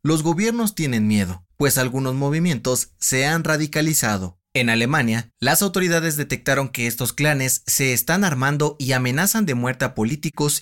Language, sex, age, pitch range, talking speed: Spanish, male, 30-49, 120-170 Hz, 155 wpm